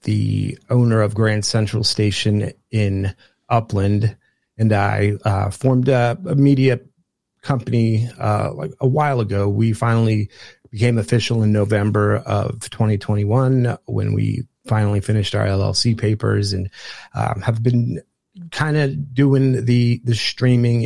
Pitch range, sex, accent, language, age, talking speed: 105-120 Hz, male, American, English, 30-49, 130 wpm